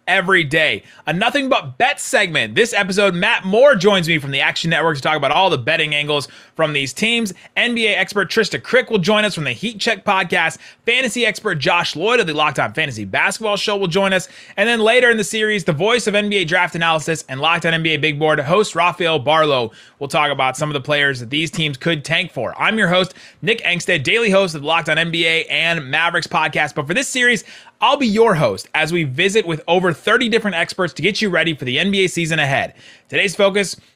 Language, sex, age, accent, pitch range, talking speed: English, male, 30-49, American, 155-210 Hz, 230 wpm